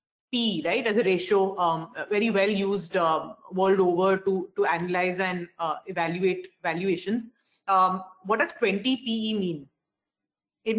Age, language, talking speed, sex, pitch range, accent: 30-49, English, 145 wpm, female, 185-235 Hz, Indian